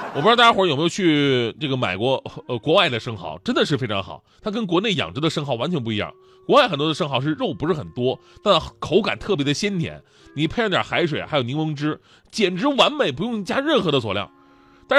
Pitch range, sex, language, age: 125-180 Hz, male, Chinese, 20-39